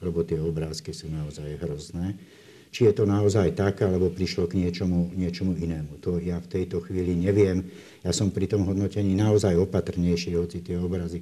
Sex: male